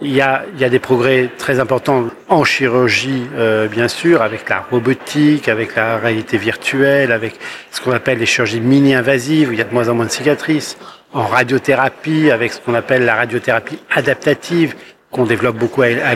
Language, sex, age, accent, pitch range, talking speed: French, male, 50-69, French, 120-145 Hz, 195 wpm